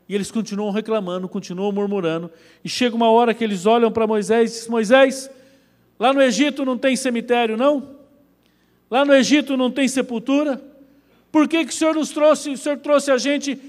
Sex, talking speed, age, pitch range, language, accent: male, 190 wpm, 50-69, 170-260 Hz, Portuguese, Brazilian